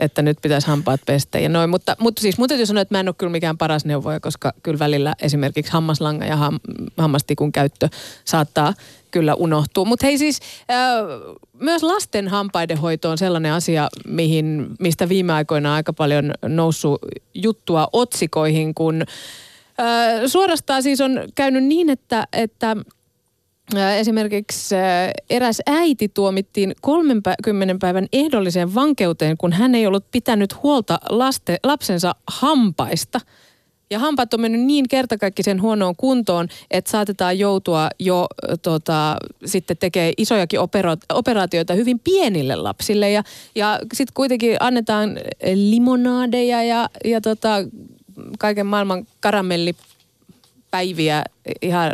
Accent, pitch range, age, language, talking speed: native, 155-225 Hz, 30-49, Finnish, 125 wpm